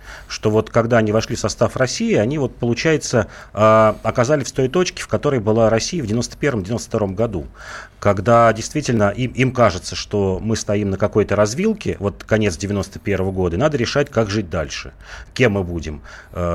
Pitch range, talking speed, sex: 95-120 Hz, 190 wpm, male